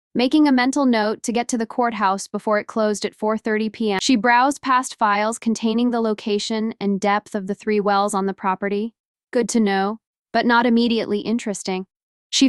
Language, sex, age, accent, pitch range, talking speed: English, female, 10-29, American, 205-245 Hz, 185 wpm